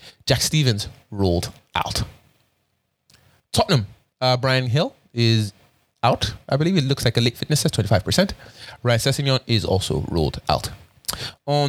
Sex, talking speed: male, 135 wpm